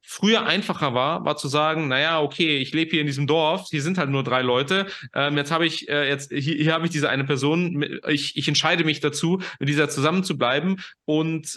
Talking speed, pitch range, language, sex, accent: 235 wpm, 140-160 Hz, English, male, German